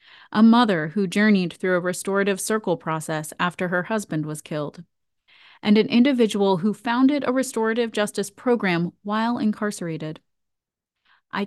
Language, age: English, 30-49